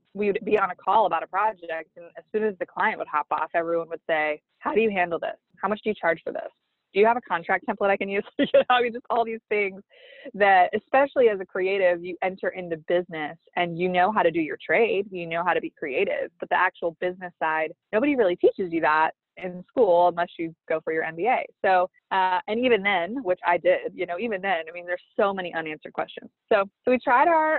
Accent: American